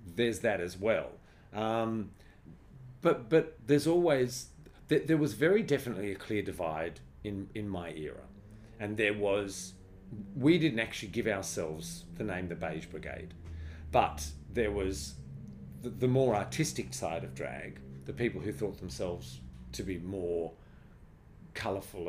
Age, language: 40-59, English